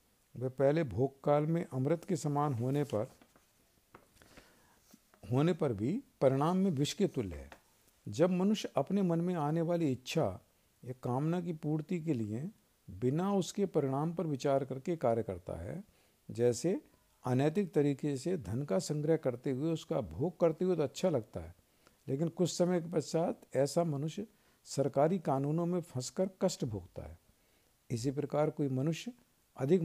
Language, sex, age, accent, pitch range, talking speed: Hindi, male, 50-69, native, 130-175 Hz, 155 wpm